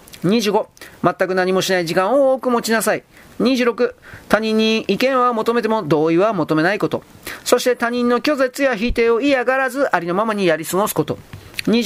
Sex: male